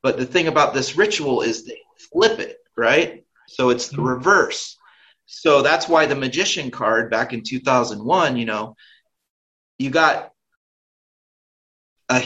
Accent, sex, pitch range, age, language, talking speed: American, male, 125-180 Hz, 30-49, English, 140 wpm